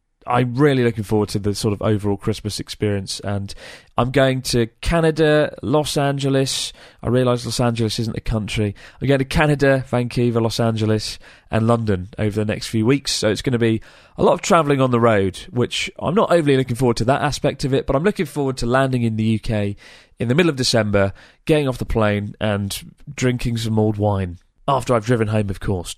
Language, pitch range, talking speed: English, 110-140 Hz, 210 wpm